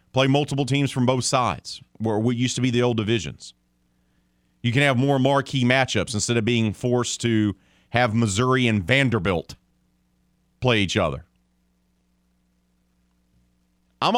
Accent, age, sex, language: American, 40-59, male, English